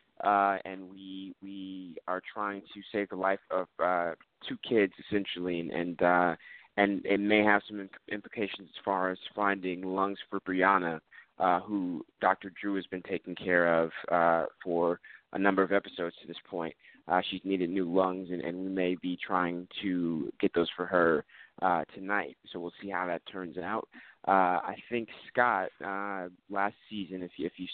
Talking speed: 185 wpm